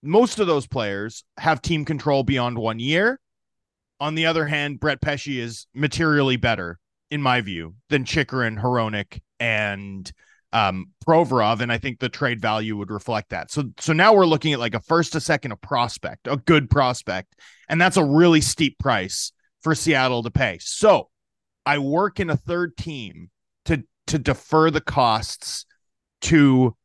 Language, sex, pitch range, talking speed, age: English, male, 120-160 Hz, 170 wpm, 30-49